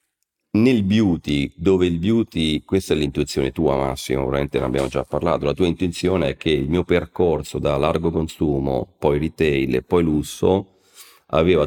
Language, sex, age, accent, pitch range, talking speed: Italian, male, 40-59, native, 70-85 Hz, 165 wpm